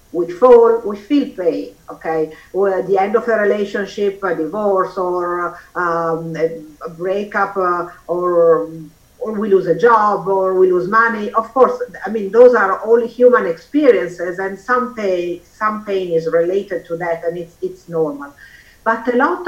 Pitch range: 175-225 Hz